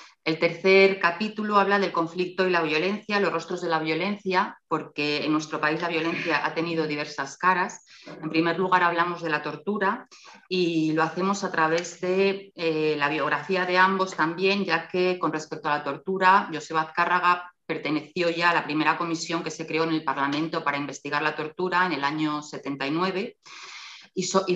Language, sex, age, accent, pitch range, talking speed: Spanish, female, 30-49, Spanish, 155-185 Hz, 180 wpm